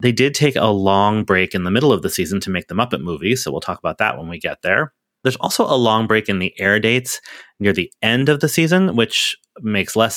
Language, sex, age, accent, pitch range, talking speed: English, male, 30-49, American, 95-120 Hz, 260 wpm